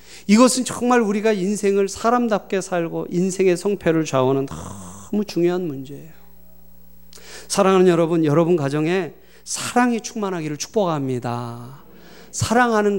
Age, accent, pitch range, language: 30-49, native, 120-190 Hz, Korean